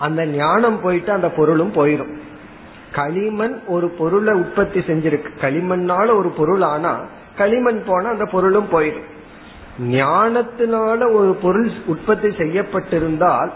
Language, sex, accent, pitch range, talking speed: Tamil, male, native, 145-200 Hz, 80 wpm